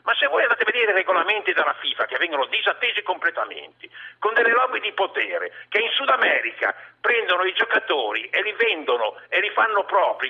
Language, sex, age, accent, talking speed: Italian, male, 50-69, native, 190 wpm